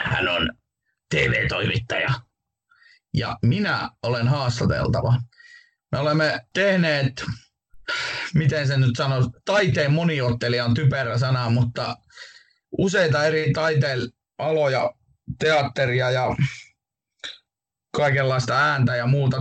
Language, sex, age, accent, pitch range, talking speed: Finnish, male, 30-49, native, 125-155 Hz, 90 wpm